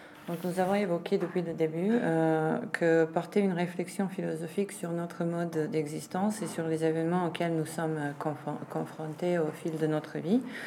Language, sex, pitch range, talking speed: French, female, 160-180 Hz, 175 wpm